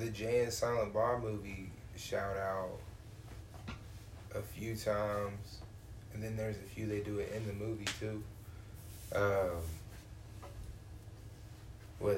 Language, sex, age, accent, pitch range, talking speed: English, male, 20-39, American, 100-115 Hz, 125 wpm